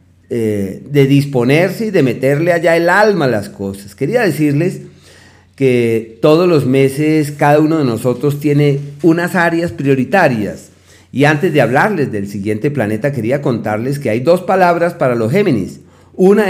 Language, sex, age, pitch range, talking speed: Spanish, male, 40-59, 115-165 Hz, 155 wpm